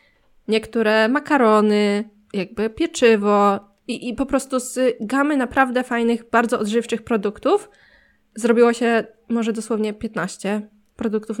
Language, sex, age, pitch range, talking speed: Polish, female, 20-39, 200-235 Hz, 110 wpm